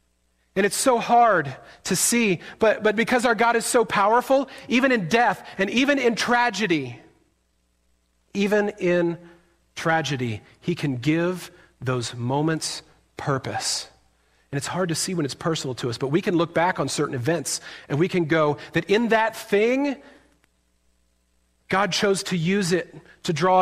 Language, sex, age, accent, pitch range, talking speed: English, male, 40-59, American, 140-210 Hz, 160 wpm